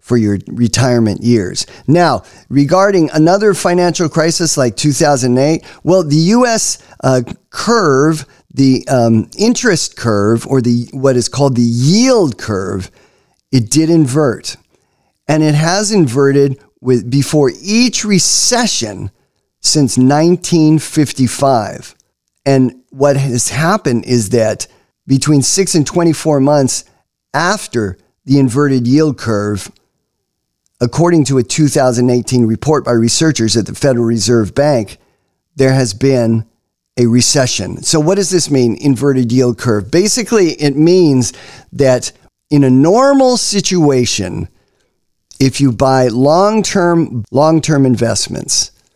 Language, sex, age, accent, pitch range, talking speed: English, male, 40-59, American, 120-155 Hz, 120 wpm